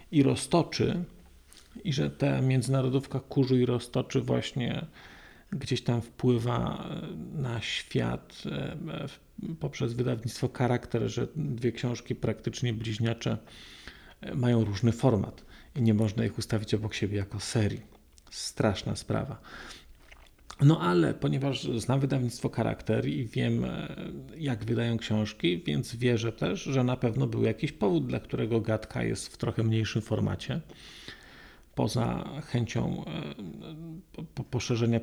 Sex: male